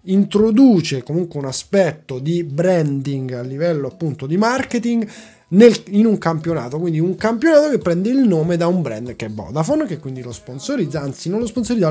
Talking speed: 180 wpm